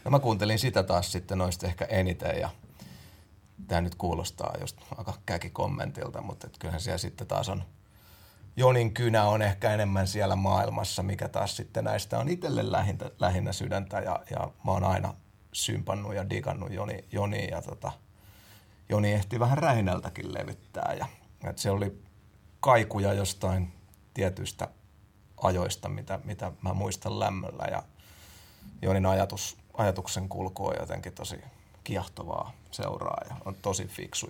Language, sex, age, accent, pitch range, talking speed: Finnish, male, 30-49, native, 95-105 Hz, 145 wpm